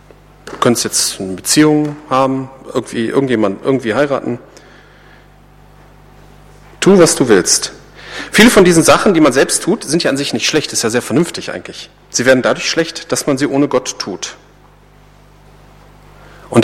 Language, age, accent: German, 40-59, German